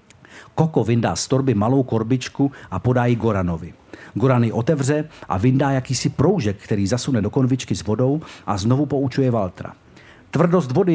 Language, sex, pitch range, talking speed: Czech, male, 110-140 Hz, 155 wpm